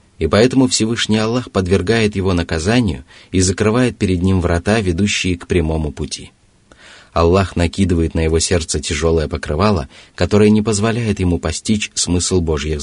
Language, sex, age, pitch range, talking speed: Russian, male, 30-49, 85-105 Hz, 140 wpm